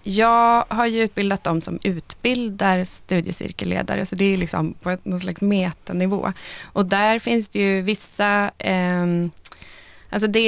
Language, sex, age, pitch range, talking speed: Swedish, female, 20-39, 175-205 Hz, 145 wpm